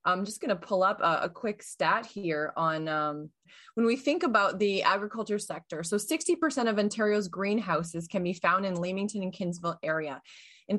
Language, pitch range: English, 180-225 Hz